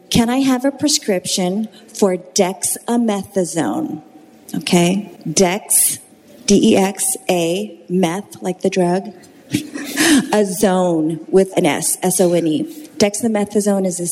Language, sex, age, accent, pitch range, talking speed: English, female, 30-49, American, 185-235 Hz, 100 wpm